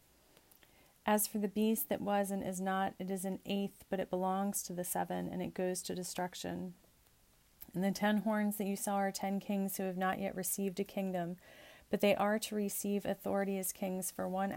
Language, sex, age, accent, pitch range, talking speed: English, female, 30-49, American, 185-205 Hz, 210 wpm